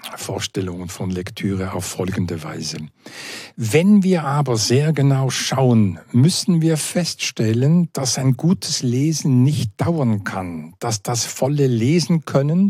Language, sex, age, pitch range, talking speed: German, male, 60-79, 115-155 Hz, 125 wpm